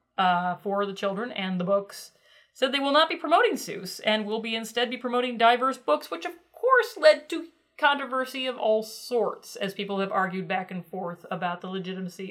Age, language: 30-49, English